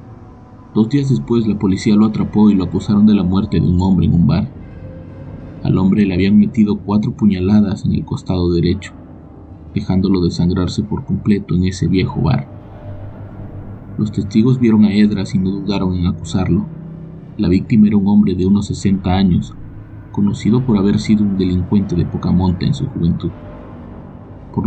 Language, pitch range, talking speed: Spanish, 95-110 Hz, 170 wpm